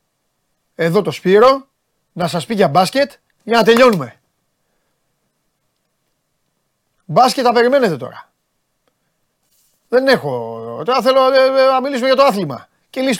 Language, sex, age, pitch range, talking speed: Greek, male, 30-49, 165-240 Hz, 110 wpm